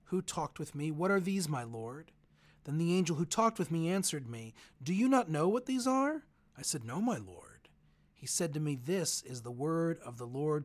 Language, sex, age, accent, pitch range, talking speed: English, male, 40-59, American, 120-170 Hz, 230 wpm